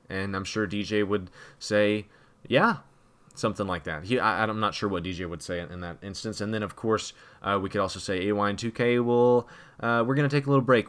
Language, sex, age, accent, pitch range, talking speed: English, male, 20-39, American, 105-140 Hz, 230 wpm